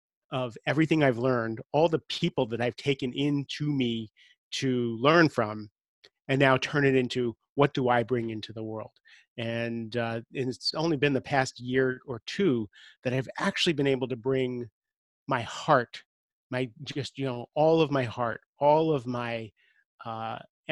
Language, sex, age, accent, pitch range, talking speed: English, male, 30-49, American, 120-140 Hz, 175 wpm